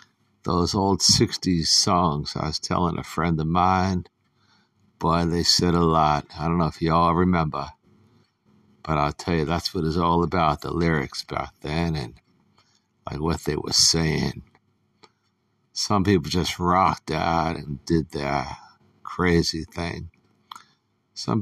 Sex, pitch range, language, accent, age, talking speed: male, 80-100 Hz, English, American, 60-79, 150 wpm